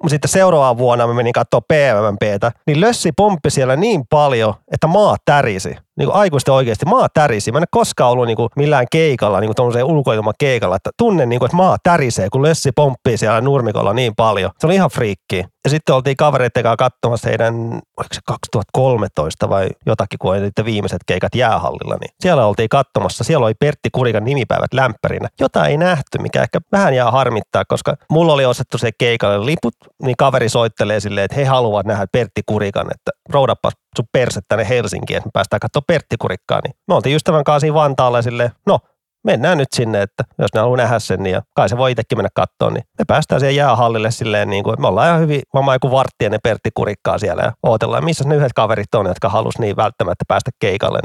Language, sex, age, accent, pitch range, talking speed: Finnish, male, 30-49, native, 110-150 Hz, 200 wpm